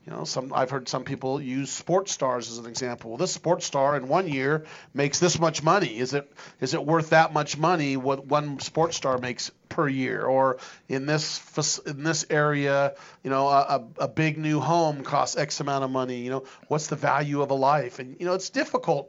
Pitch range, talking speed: 135-165 Hz, 220 wpm